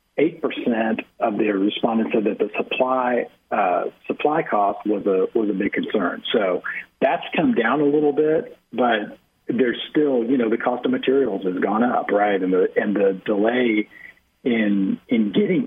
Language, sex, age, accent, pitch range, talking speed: English, male, 40-59, American, 105-125 Hz, 170 wpm